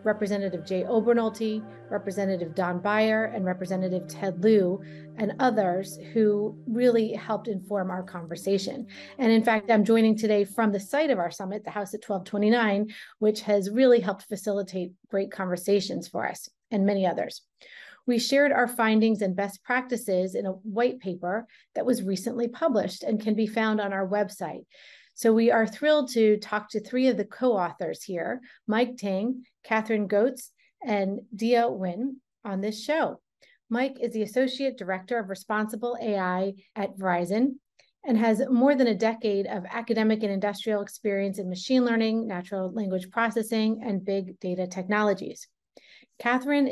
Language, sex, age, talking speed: English, female, 30-49, 155 wpm